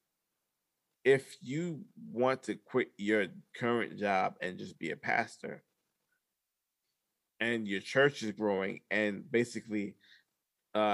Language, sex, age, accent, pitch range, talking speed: English, male, 20-39, American, 105-140 Hz, 115 wpm